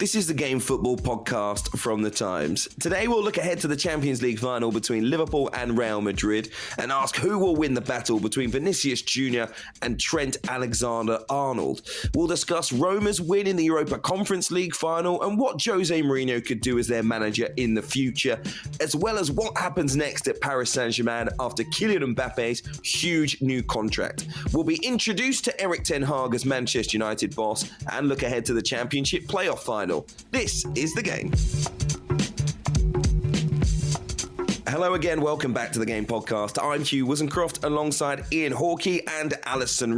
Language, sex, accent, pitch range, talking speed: English, male, British, 120-165 Hz, 170 wpm